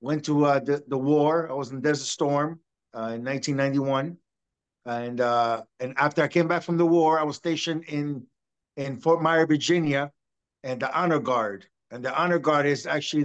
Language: English